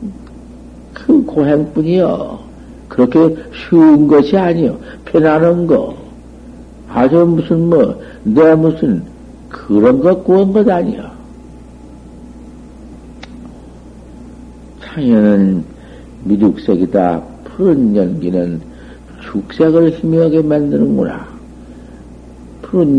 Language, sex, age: Korean, male, 60-79